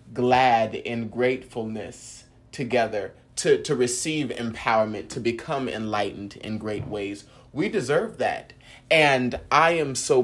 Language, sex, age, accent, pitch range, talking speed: English, male, 30-49, American, 110-125 Hz, 125 wpm